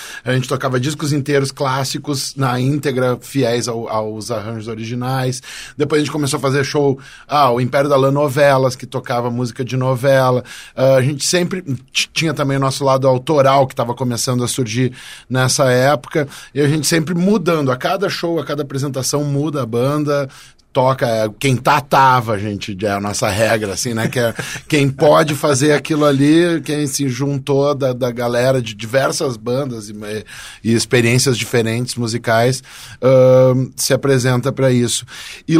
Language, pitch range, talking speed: Portuguese, 120-150 Hz, 170 wpm